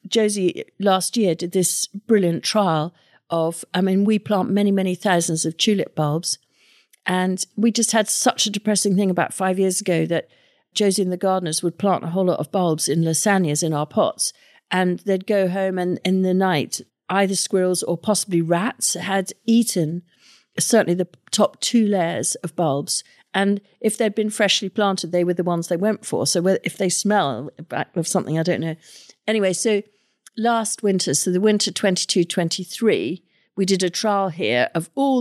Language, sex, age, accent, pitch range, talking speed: English, female, 50-69, British, 175-210 Hz, 180 wpm